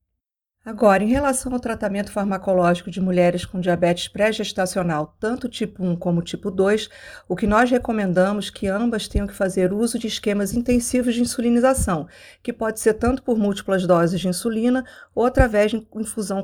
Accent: Brazilian